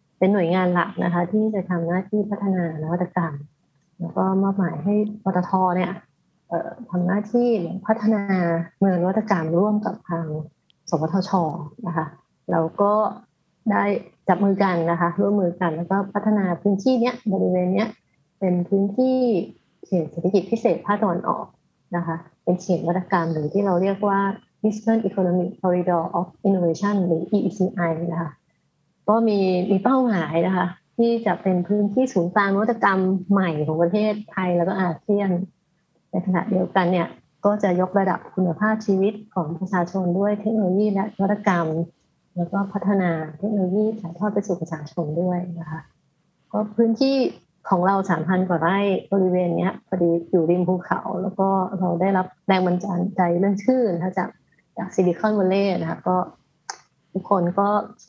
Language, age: Thai, 30-49